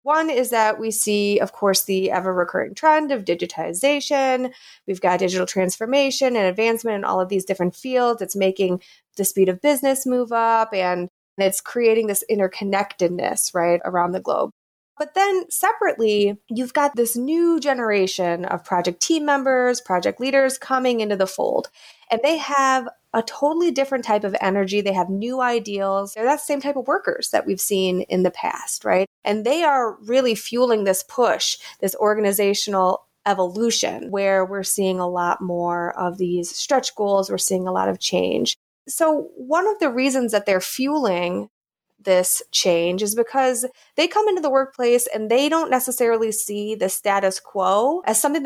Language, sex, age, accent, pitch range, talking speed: English, female, 20-39, American, 195-260 Hz, 170 wpm